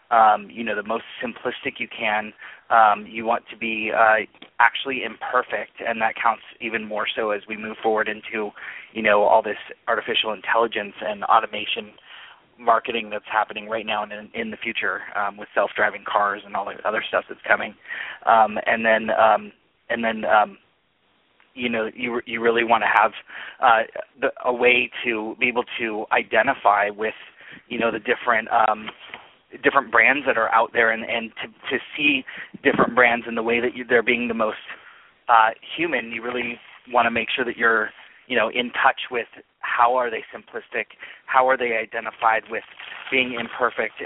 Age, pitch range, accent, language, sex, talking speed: 30-49, 110-125 Hz, American, English, male, 185 wpm